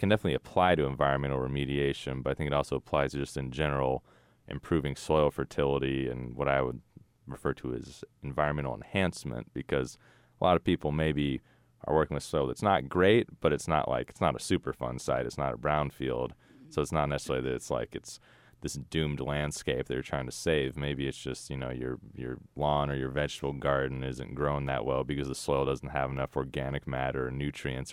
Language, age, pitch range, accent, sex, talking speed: English, 30-49, 65-75 Hz, American, male, 205 wpm